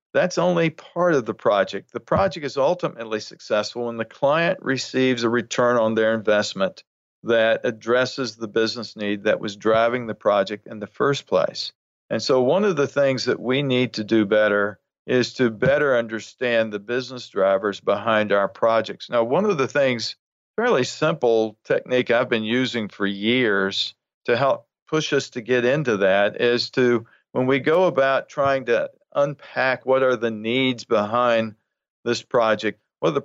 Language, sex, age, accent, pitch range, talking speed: English, male, 50-69, American, 110-130 Hz, 175 wpm